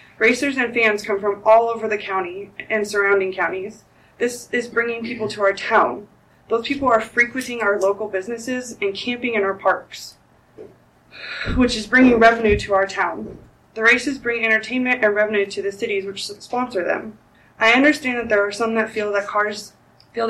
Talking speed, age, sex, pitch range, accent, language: 180 wpm, 20-39, female, 205-235 Hz, American, English